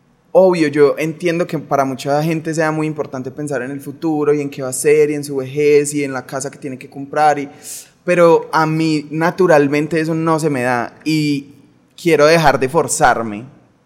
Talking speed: 205 wpm